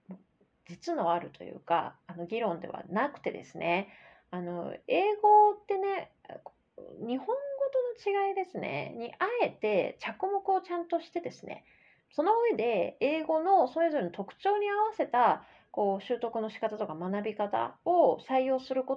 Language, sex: Japanese, female